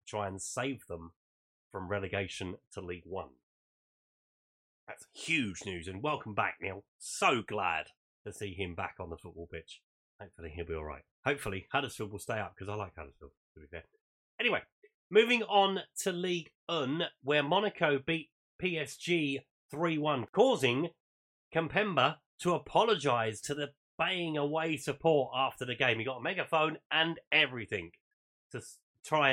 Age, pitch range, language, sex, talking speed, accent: 30-49, 115-175 Hz, English, male, 155 wpm, British